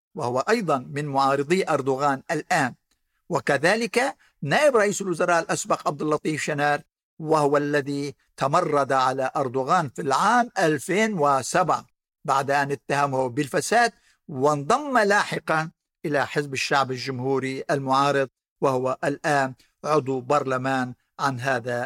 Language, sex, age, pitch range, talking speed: Arabic, male, 60-79, 140-185 Hz, 105 wpm